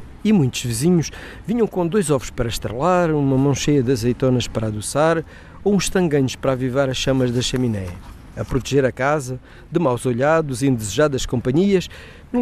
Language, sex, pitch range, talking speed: Portuguese, male, 120-160 Hz, 175 wpm